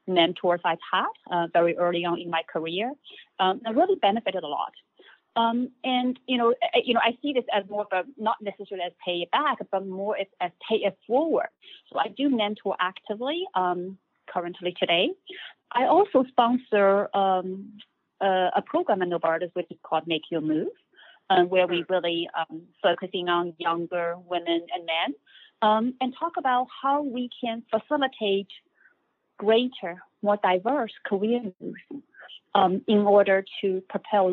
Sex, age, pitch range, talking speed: female, 30-49, 185-255 Hz, 165 wpm